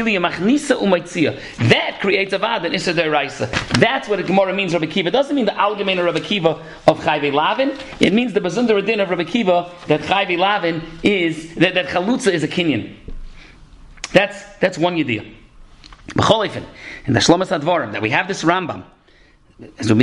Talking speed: 170 wpm